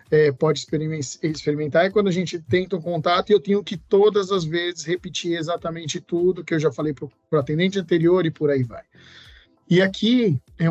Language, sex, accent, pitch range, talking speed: Portuguese, male, Brazilian, 150-185 Hz, 195 wpm